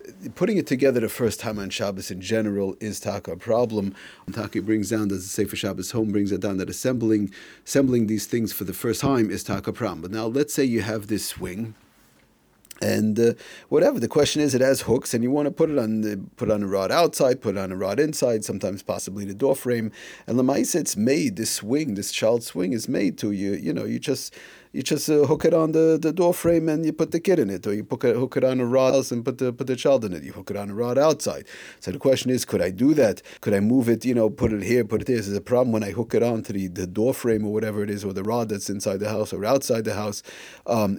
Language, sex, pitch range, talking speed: English, male, 105-130 Hz, 275 wpm